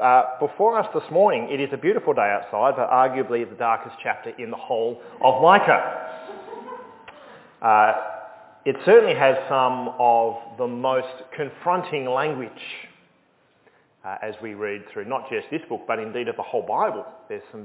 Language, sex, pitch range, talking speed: English, male, 130-190 Hz, 165 wpm